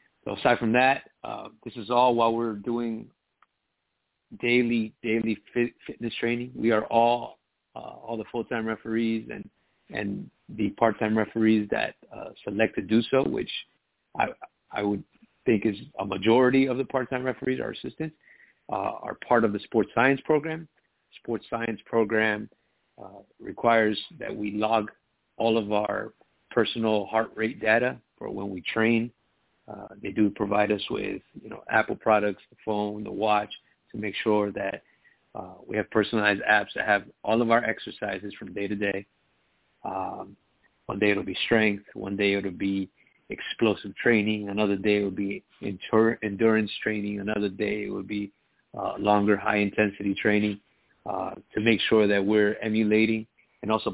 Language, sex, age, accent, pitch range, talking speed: English, male, 50-69, American, 105-115 Hz, 165 wpm